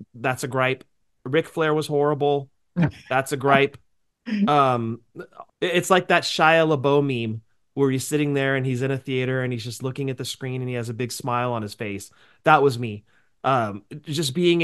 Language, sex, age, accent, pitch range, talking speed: English, male, 30-49, American, 120-145 Hz, 195 wpm